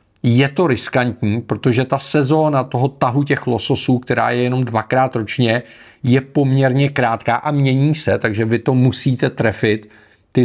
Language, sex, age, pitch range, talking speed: Czech, male, 40-59, 115-135 Hz, 155 wpm